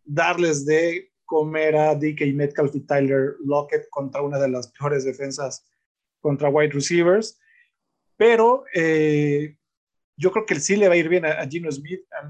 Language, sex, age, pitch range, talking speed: Spanish, male, 20-39, 140-170 Hz, 165 wpm